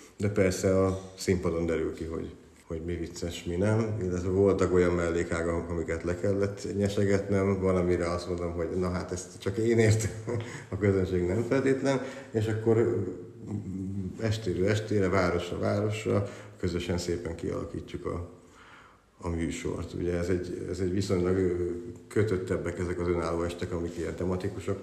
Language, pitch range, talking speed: Hungarian, 90-100 Hz, 145 wpm